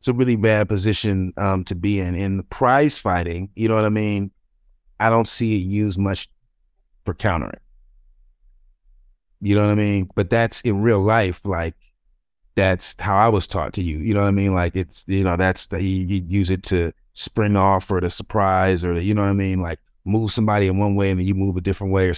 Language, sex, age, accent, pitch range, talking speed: English, male, 30-49, American, 90-105 Hz, 230 wpm